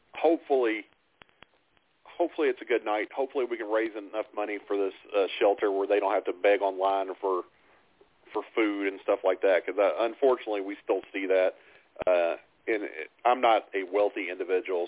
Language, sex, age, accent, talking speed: English, male, 40-59, American, 175 wpm